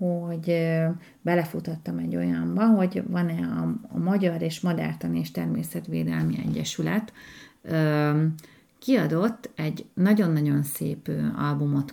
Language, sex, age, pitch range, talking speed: Hungarian, female, 30-49, 140-175 Hz, 85 wpm